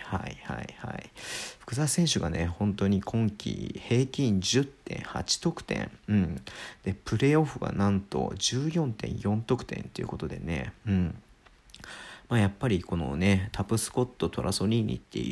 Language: Japanese